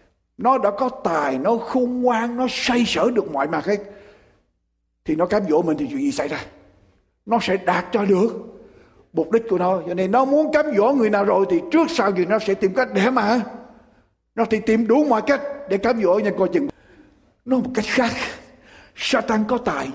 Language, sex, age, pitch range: Japanese, male, 60-79, 200-270 Hz